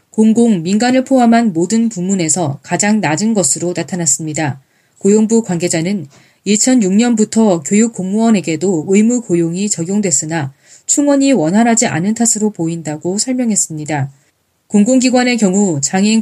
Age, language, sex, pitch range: 20-39, Korean, female, 170-225 Hz